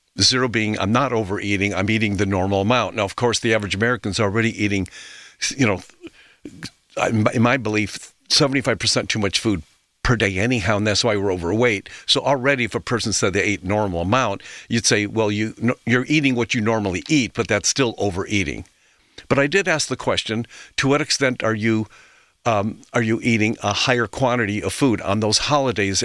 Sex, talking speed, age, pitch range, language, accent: male, 190 wpm, 50-69, 105-140 Hz, English, American